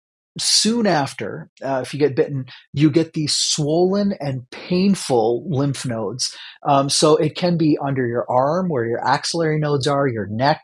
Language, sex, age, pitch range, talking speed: English, male, 30-49, 130-160 Hz, 170 wpm